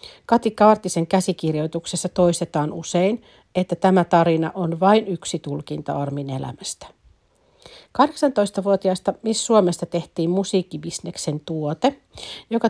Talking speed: 100 wpm